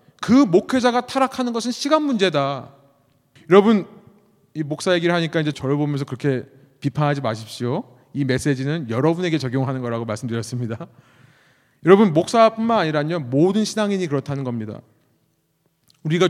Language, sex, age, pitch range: Korean, male, 30-49, 140-215 Hz